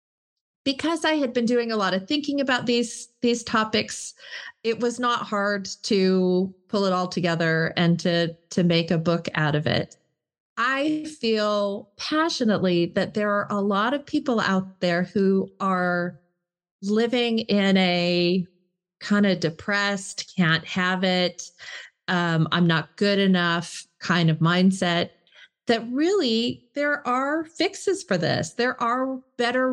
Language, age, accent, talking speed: English, 30-49, American, 145 wpm